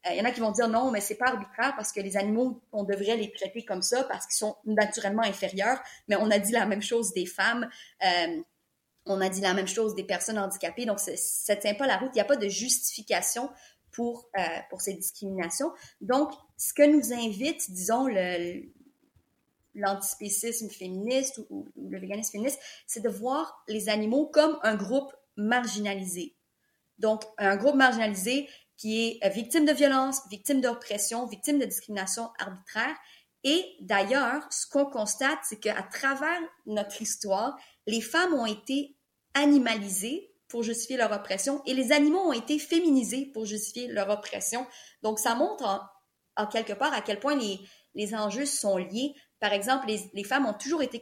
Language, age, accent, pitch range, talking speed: French, 30-49, Canadian, 205-275 Hz, 185 wpm